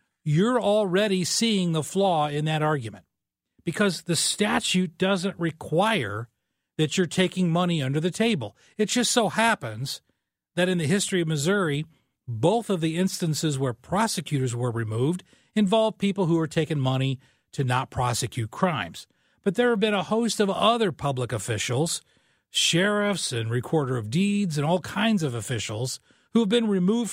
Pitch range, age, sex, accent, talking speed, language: 140-200 Hz, 40-59, male, American, 160 wpm, English